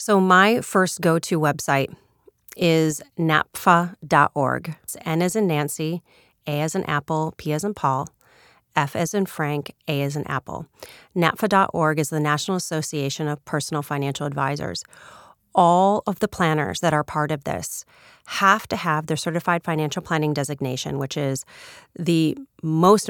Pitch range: 145-180 Hz